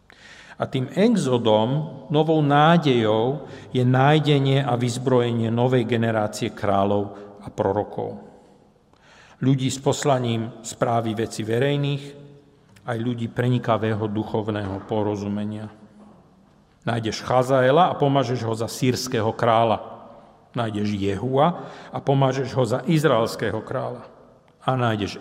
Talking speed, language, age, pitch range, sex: 100 wpm, Slovak, 50-69, 110-145 Hz, male